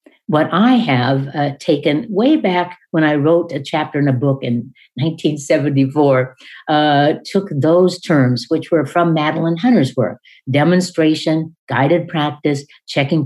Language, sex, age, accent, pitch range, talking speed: English, female, 60-79, American, 135-170 Hz, 140 wpm